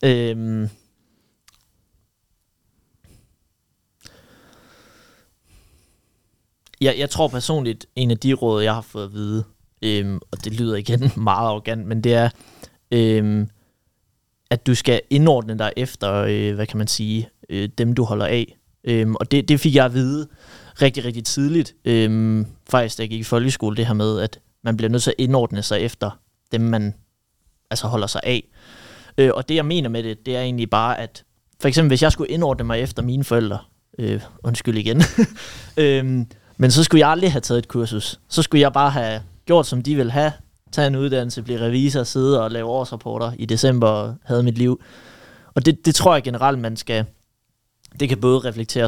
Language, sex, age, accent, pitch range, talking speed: English, male, 30-49, Danish, 110-130 Hz, 180 wpm